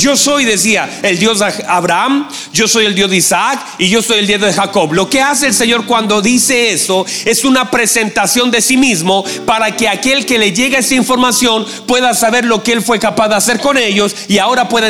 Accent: Mexican